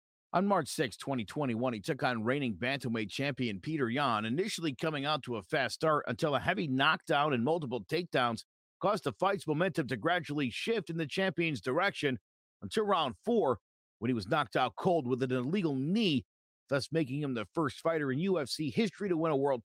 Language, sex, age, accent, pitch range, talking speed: English, male, 50-69, American, 125-165 Hz, 190 wpm